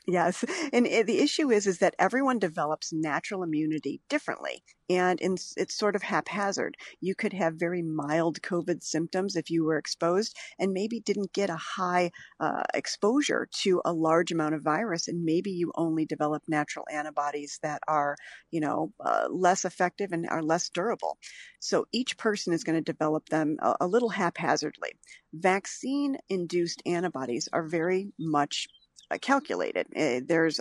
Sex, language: female, English